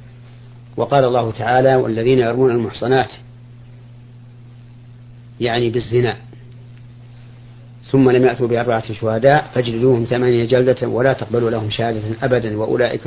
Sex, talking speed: male, 100 wpm